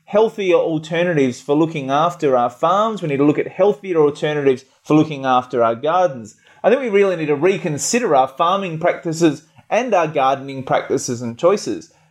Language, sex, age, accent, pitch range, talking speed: English, male, 30-49, Australian, 140-190 Hz, 175 wpm